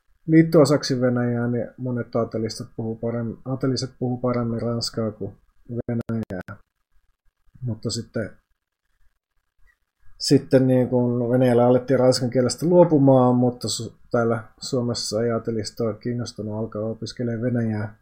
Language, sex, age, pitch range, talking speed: Finnish, male, 30-49, 110-125 Hz, 95 wpm